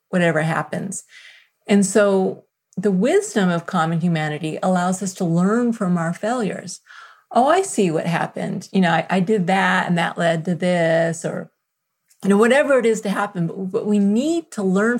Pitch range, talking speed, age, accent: 185-240 Hz, 185 wpm, 30-49, American